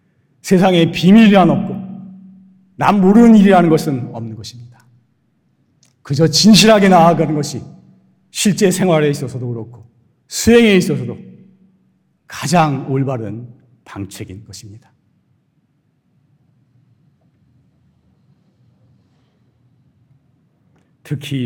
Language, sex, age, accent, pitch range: Korean, male, 40-59, native, 125-180 Hz